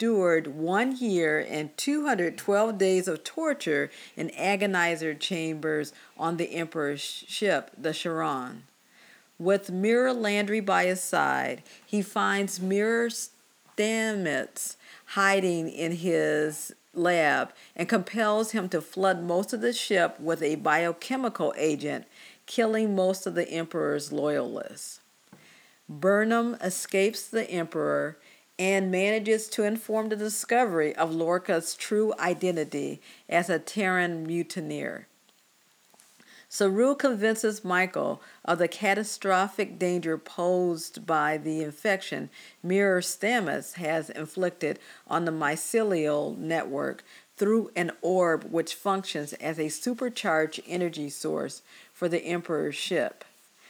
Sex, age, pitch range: female, 50-69, 165-215 Hz